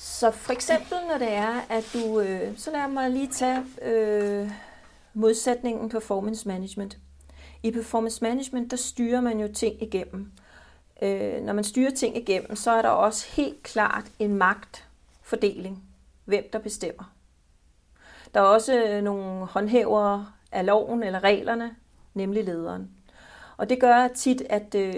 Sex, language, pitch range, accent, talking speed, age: female, Danish, 200-230 Hz, native, 145 wpm, 40-59